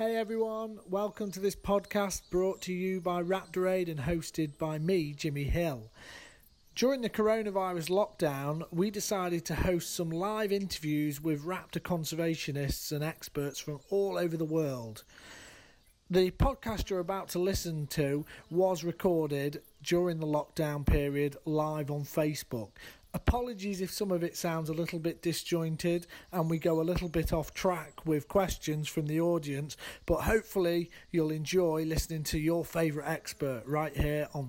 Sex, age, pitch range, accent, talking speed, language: male, 40-59, 145-180 Hz, British, 155 wpm, English